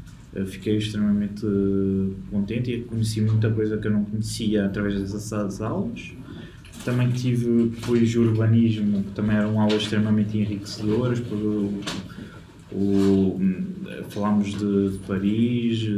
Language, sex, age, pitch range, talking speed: Portuguese, male, 20-39, 100-115 Hz, 125 wpm